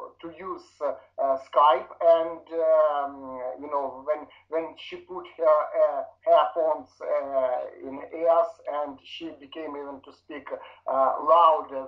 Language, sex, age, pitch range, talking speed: English, male, 50-69, 145-220 Hz, 135 wpm